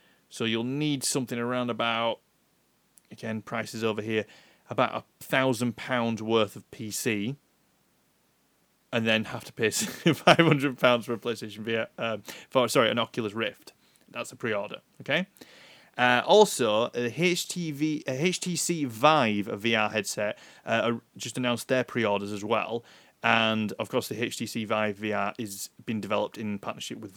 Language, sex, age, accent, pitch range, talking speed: English, male, 30-49, British, 110-135 Hz, 145 wpm